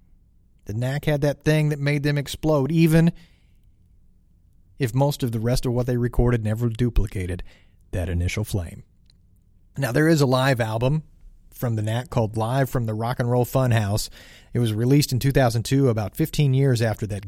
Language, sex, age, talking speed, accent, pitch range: English, male, 40-59, 175 wpm, American, 105-140 Hz